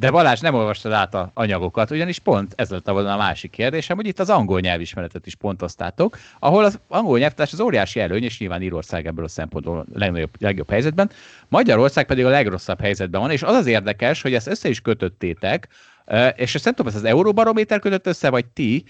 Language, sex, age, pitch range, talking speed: Hungarian, male, 30-49, 100-150 Hz, 200 wpm